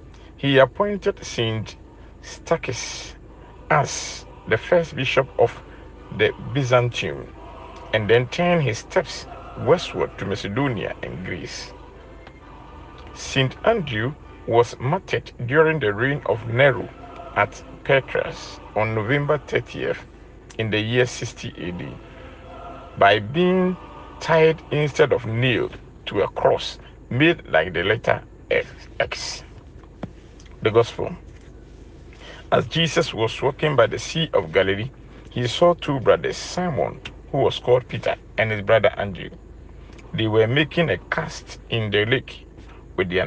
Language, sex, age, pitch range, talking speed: English, male, 50-69, 105-160 Hz, 120 wpm